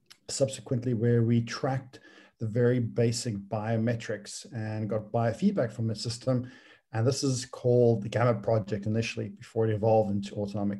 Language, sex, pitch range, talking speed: English, male, 110-130 Hz, 150 wpm